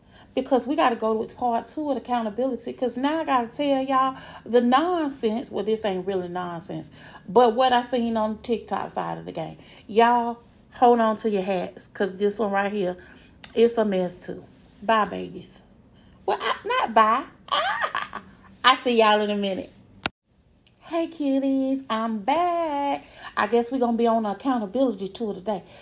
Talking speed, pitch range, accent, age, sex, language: 175 wpm, 195-245 Hz, American, 40-59, female, English